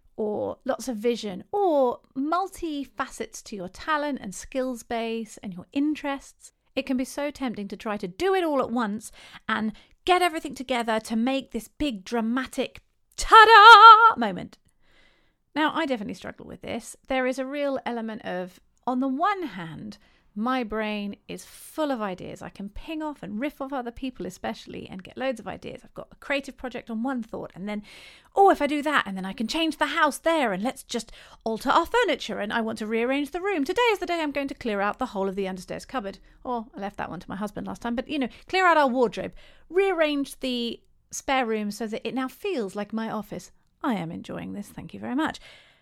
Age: 40-59